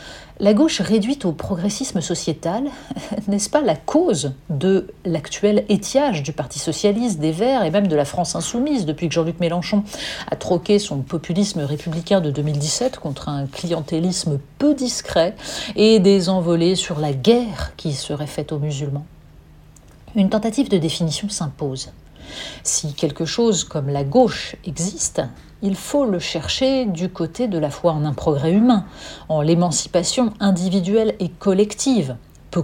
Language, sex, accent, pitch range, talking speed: French, female, French, 150-205 Hz, 150 wpm